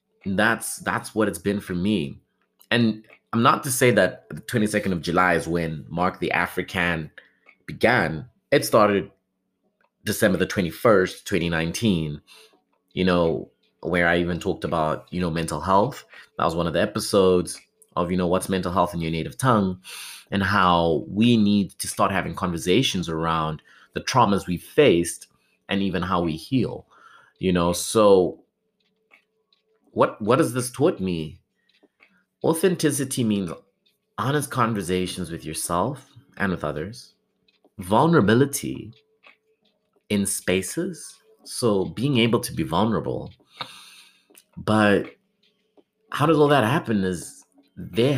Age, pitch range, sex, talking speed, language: 30-49, 90-130 Hz, male, 135 wpm, English